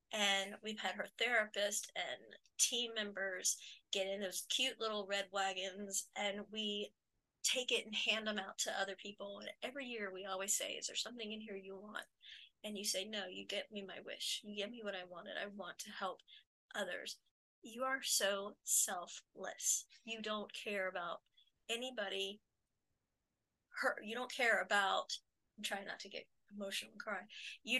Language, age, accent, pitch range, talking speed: English, 30-49, American, 195-220 Hz, 175 wpm